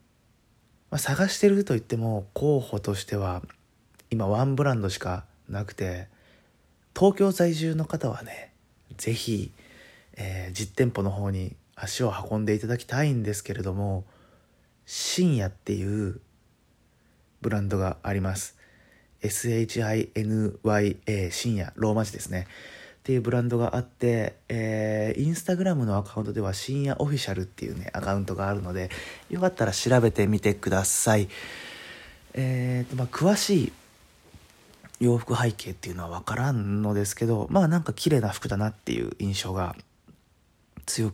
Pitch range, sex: 95-125 Hz, male